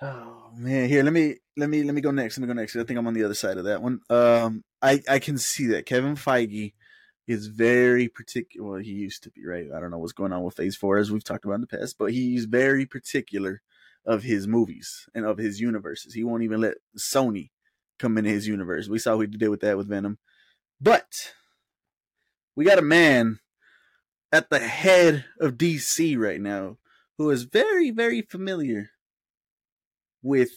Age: 20-39